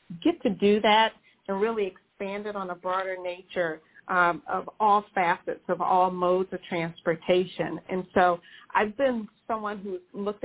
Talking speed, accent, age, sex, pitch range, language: 160 wpm, American, 40-59, female, 185-210 Hz, English